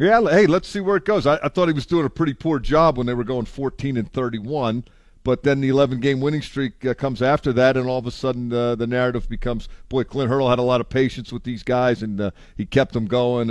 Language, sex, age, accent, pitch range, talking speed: English, male, 50-69, American, 110-135 Hz, 260 wpm